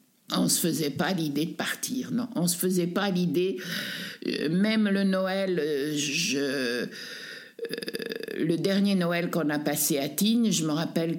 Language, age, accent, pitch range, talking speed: French, 60-79, French, 160-220 Hz, 155 wpm